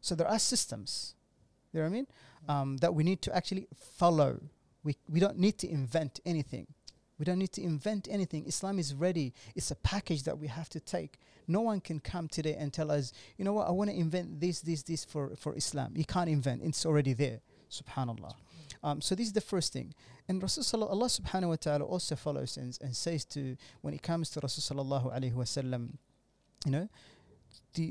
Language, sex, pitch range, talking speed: English, male, 140-180 Hz, 215 wpm